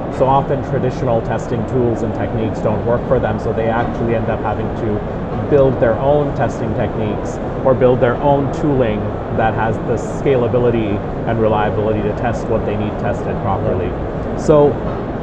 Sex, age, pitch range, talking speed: male, 30-49, 110-135 Hz, 165 wpm